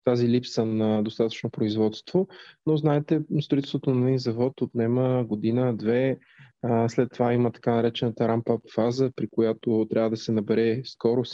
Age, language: 20-39, Bulgarian